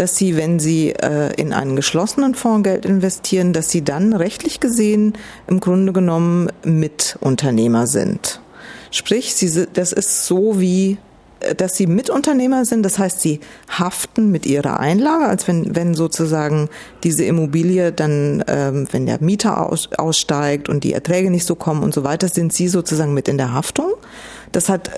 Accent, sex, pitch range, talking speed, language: German, female, 160-205 Hz, 160 wpm, German